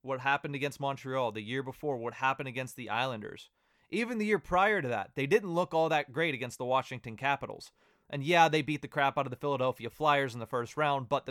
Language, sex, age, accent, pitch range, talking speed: English, male, 20-39, American, 130-160 Hz, 235 wpm